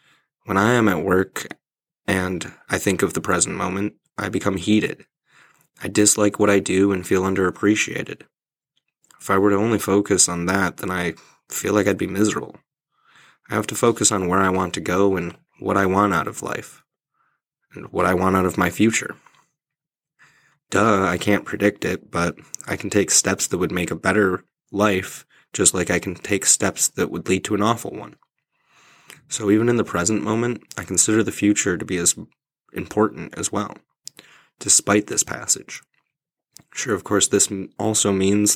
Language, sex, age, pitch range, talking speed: English, male, 20-39, 95-105 Hz, 180 wpm